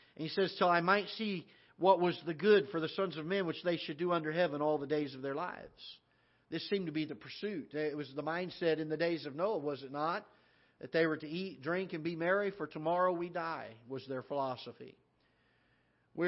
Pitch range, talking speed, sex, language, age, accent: 155-195 Hz, 230 wpm, male, English, 50-69, American